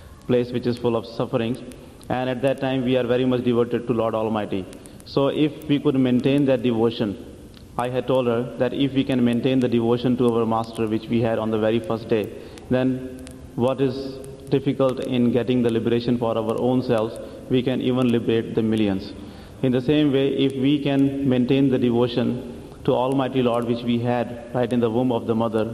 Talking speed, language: 205 wpm, English